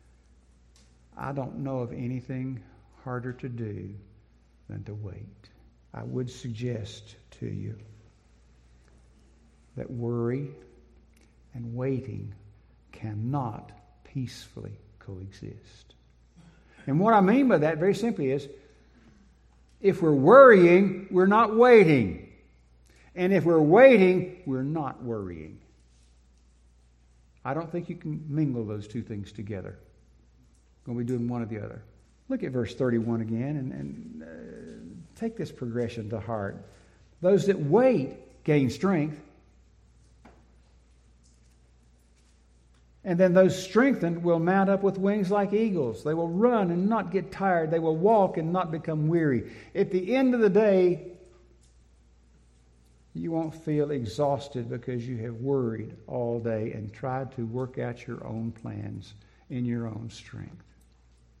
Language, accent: English, American